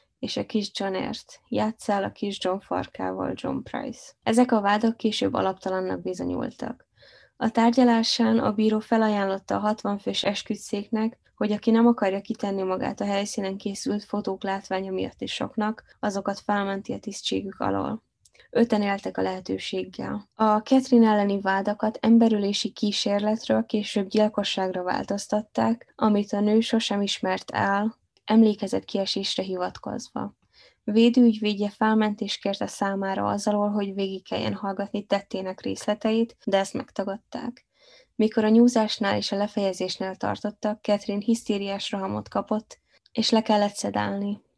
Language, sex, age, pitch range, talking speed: Hungarian, female, 10-29, 195-220 Hz, 130 wpm